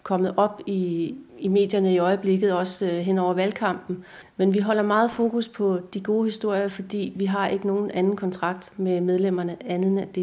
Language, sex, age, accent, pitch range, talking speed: Danish, female, 30-49, native, 180-200 Hz, 190 wpm